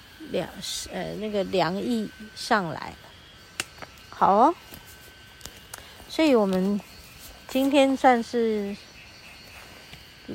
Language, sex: Chinese, female